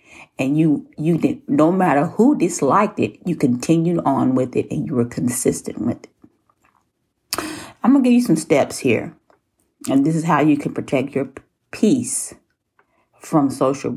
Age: 40-59